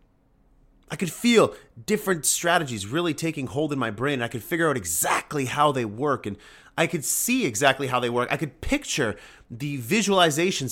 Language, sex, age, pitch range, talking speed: English, male, 30-49, 105-150 Hz, 180 wpm